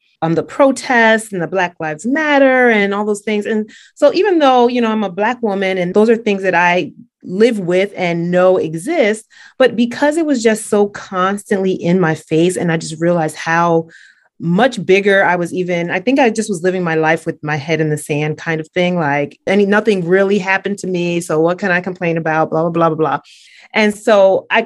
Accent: American